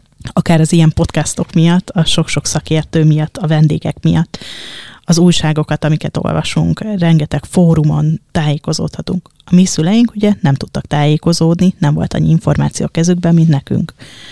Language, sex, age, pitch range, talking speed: Hungarian, female, 20-39, 150-180 Hz, 145 wpm